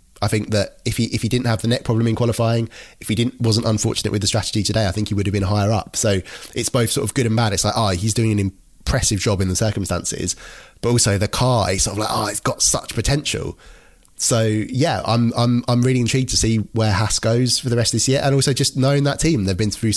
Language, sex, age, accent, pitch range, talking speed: English, male, 20-39, British, 100-120 Hz, 270 wpm